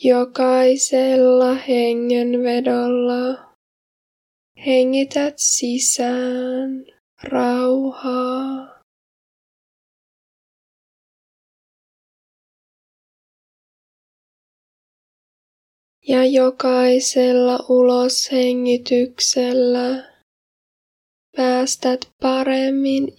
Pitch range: 245-265 Hz